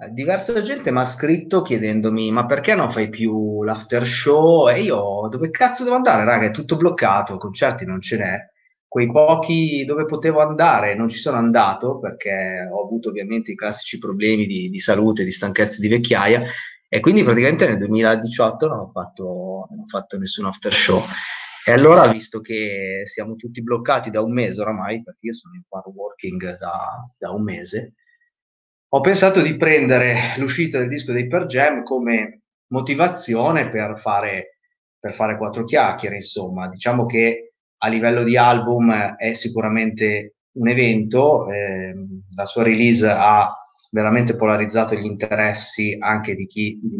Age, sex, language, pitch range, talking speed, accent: 30-49, male, Italian, 105-150 Hz, 160 wpm, native